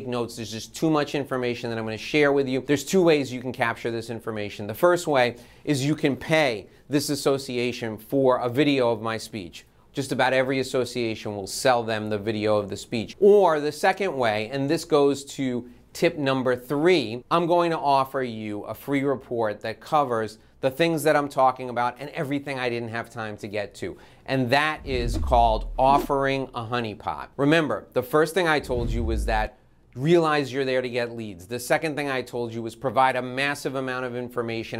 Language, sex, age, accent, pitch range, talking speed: English, male, 30-49, American, 115-145 Hz, 205 wpm